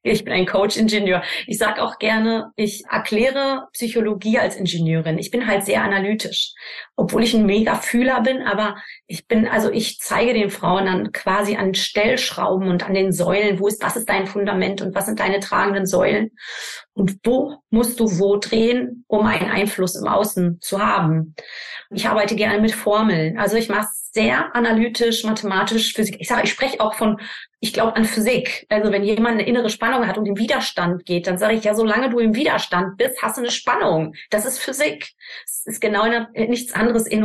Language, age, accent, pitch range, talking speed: German, 30-49, German, 200-230 Hz, 195 wpm